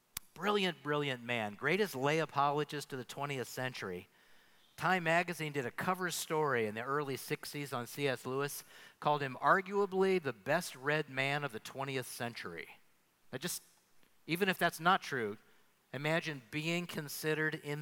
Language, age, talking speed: English, 50-69, 150 wpm